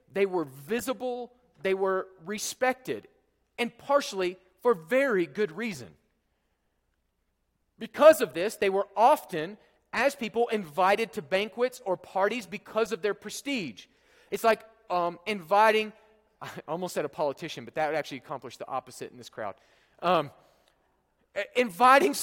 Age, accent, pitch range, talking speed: 40-59, American, 190-240 Hz, 135 wpm